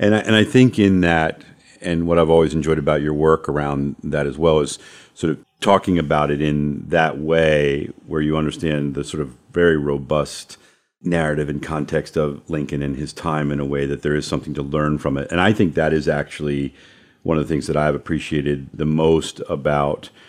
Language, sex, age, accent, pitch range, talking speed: English, male, 40-59, American, 75-85 Hz, 205 wpm